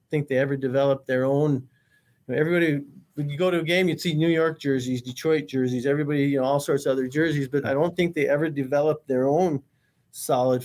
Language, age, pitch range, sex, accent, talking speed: English, 40-59, 130-150 Hz, male, American, 215 wpm